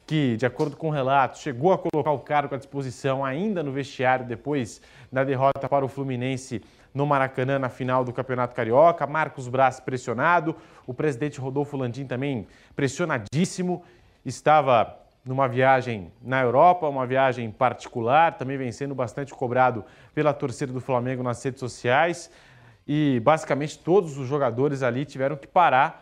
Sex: male